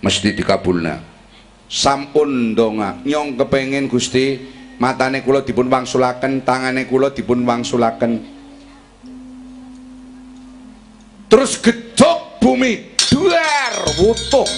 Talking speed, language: 80 wpm, Indonesian